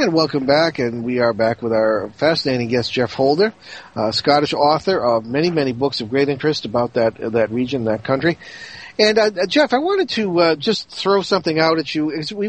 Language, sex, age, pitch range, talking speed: English, male, 40-59, 125-155 Hz, 215 wpm